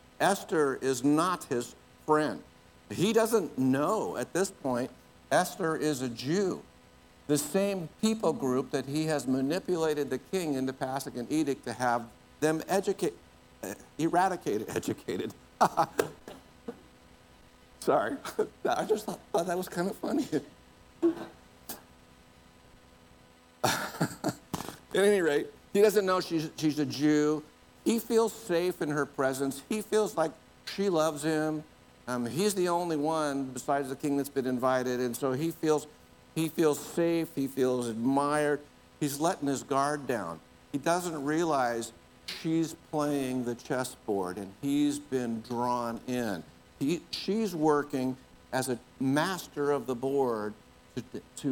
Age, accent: 60-79, American